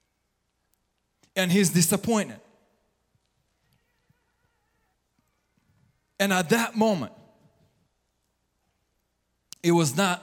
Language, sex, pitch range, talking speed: English, male, 160-225 Hz, 60 wpm